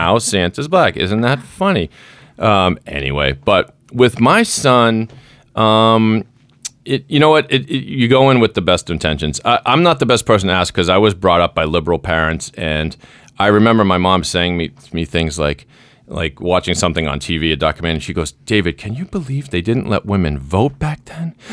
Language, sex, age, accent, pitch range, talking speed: English, male, 40-59, American, 95-135 Hz, 200 wpm